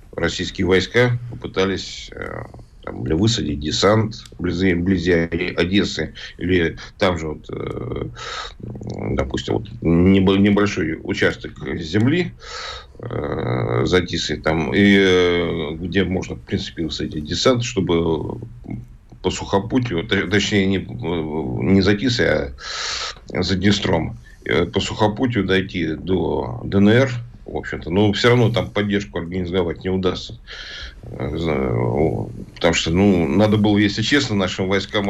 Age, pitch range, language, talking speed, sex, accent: 50-69, 85-105 Hz, Russian, 115 wpm, male, native